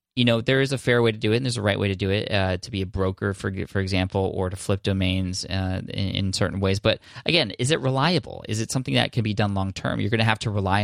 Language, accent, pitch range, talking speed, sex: English, American, 95-115 Hz, 295 wpm, male